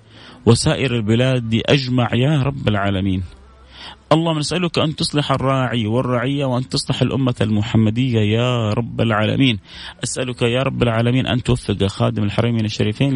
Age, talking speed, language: 30-49, 130 wpm, English